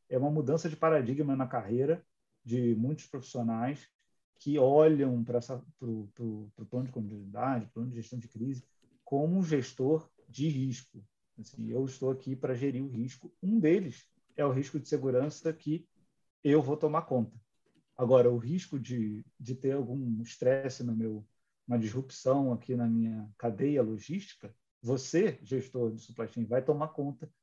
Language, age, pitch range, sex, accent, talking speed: Portuguese, 40-59, 120-145 Hz, male, Brazilian, 150 wpm